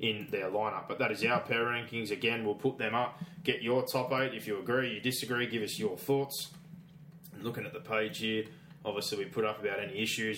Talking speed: 225 wpm